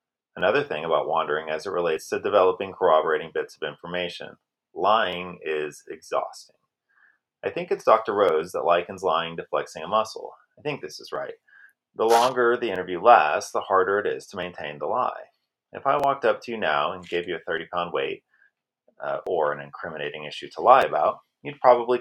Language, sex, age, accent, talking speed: English, male, 30-49, American, 190 wpm